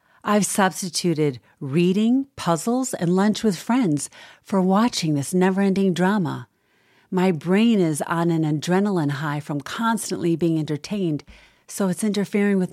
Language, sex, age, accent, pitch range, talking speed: English, female, 40-59, American, 160-210 Hz, 130 wpm